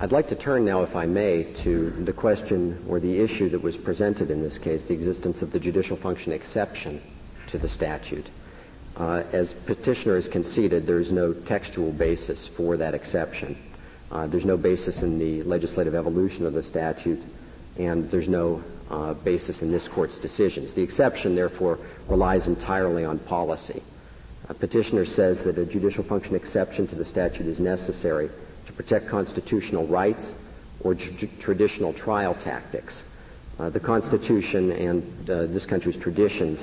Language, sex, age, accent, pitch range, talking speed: English, male, 50-69, American, 85-95 Hz, 160 wpm